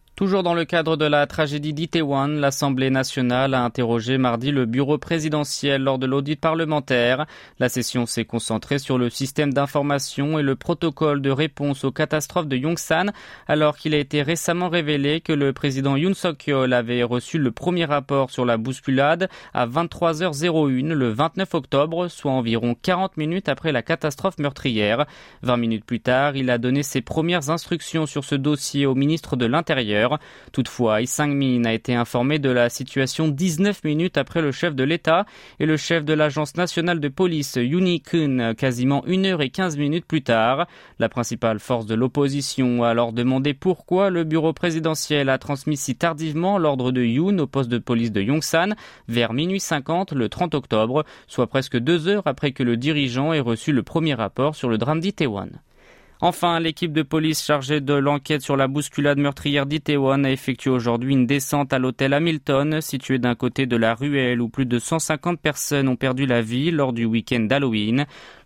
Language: French